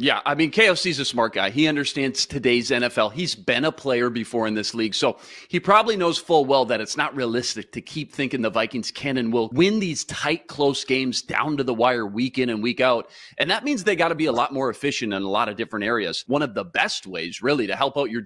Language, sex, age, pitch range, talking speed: English, male, 30-49, 120-165 Hz, 255 wpm